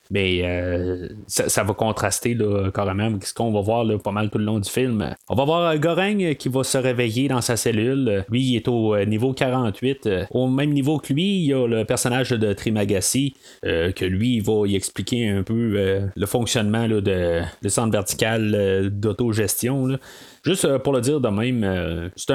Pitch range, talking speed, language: 100-125 Hz, 205 wpm, French